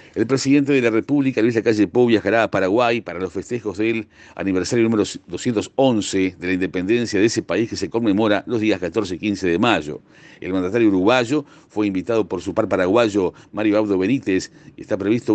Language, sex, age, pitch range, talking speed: Spanish, male, 50-69, 95-120 Hz, 190 wpm